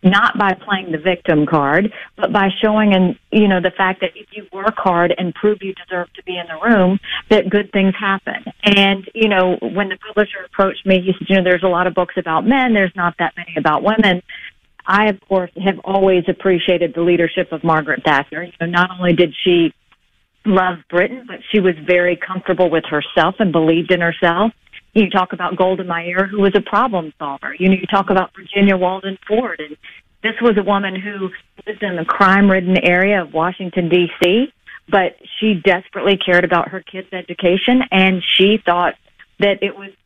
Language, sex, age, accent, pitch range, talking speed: English, female, 50-69, American, 180-205 Hz, 200 wpm